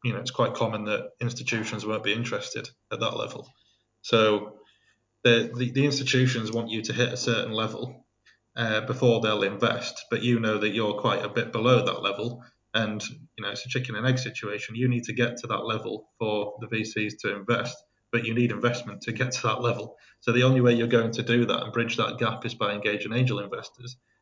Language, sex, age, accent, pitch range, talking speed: English, male, 20-39, British, 110-120 Hz, 220 wpm